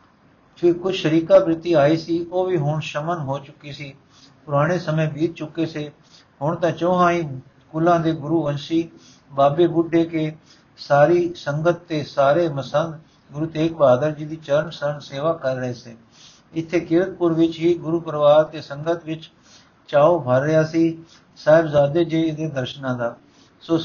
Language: Punjabi